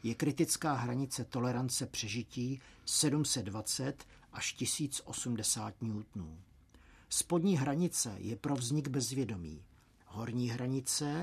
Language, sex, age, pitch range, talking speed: Czech, male, 50-69, 115-145 Hz, 90 wpm